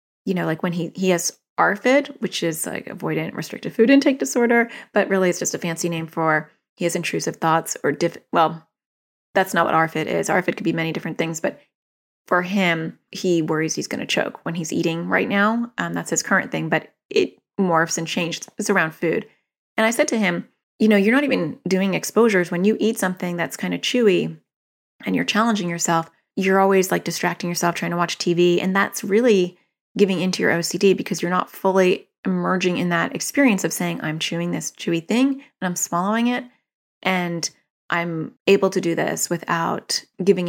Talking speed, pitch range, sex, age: 205 wpm, 170-210 Hz, female, 30-49